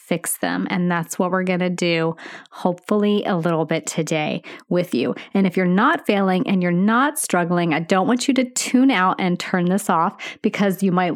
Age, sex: 30-49, female